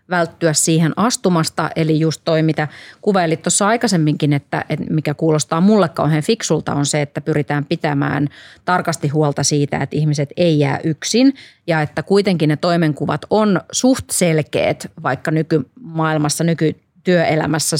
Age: 30-49